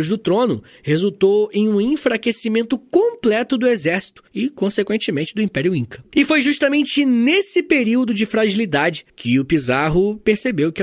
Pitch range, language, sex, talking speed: 150-240 Hz, Portuguese, male, 145 wpm